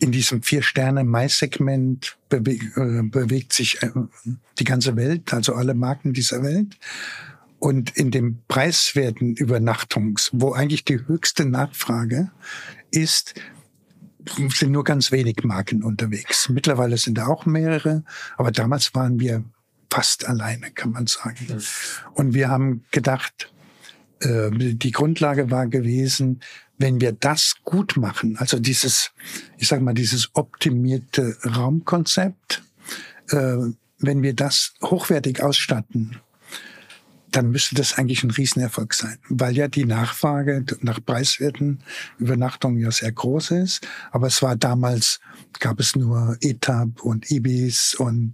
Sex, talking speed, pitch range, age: male, 130 wpm, 120-140 Hz, 60-79